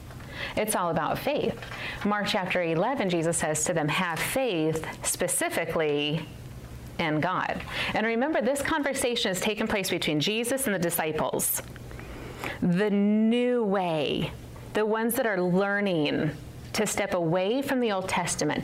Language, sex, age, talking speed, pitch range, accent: English, female, 30-49, 140 wpm, 165-220 Hz, American